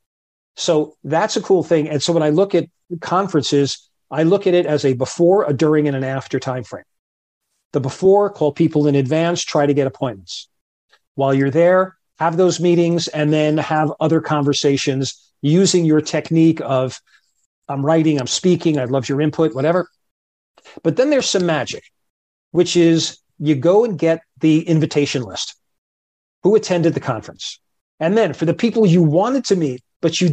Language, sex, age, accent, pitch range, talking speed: English, male, 40-59, American, 140-175 Hz, 175 wpm